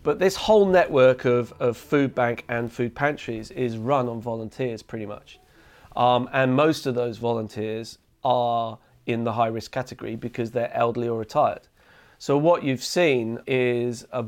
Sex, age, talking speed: male, 40-59, 165 wpm